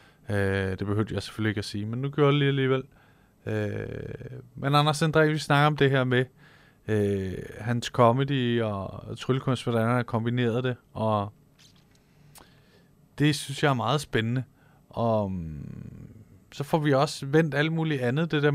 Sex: male